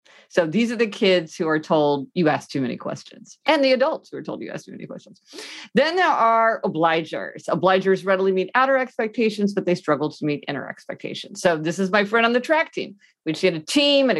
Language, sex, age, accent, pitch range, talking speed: English, female, 50-69, American, 175-245 Hz, 235 wpm